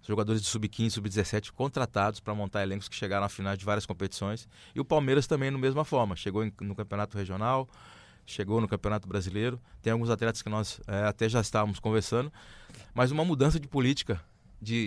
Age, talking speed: 20-39, 185 wpm